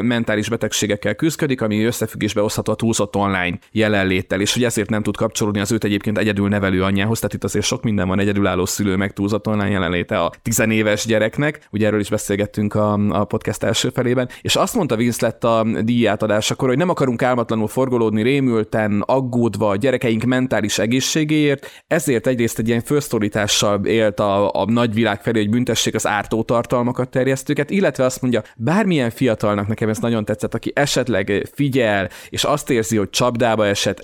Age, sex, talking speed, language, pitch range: 30-49, male, 170 wpm, Hungarian, 105-120 Hz